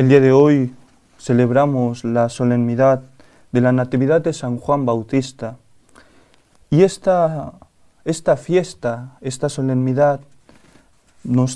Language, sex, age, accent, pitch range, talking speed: Spanish, male, 30-49, Spanish, 120-145 Hz, 110 wpm